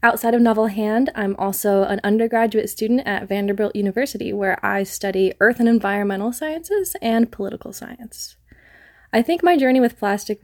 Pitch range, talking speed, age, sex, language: 190-225 Hz, 160 wpm, 20-39, female, English